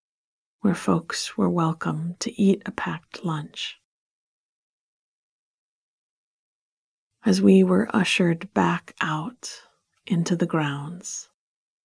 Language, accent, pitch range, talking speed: English, American, 160-195 Hz, 90 wpm